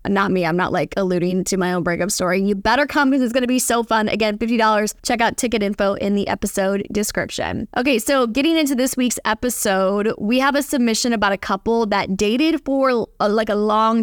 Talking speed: 220 wpm